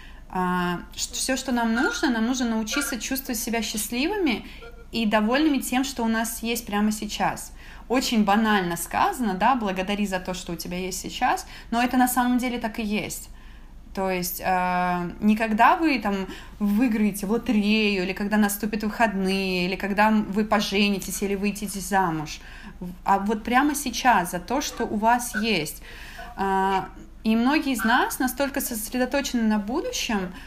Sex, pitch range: female, 200-245 Hz